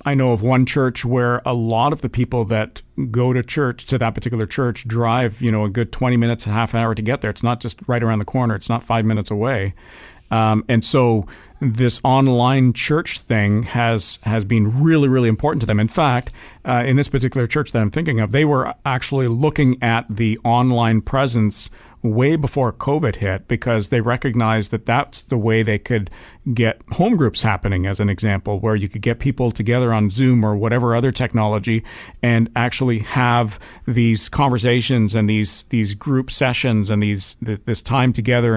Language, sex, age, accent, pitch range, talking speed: English, male, 50-69, American, 110-130 Hz, 195 wpm